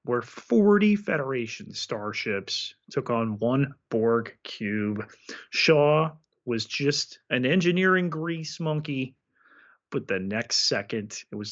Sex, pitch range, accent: male, 105-130 Hz, American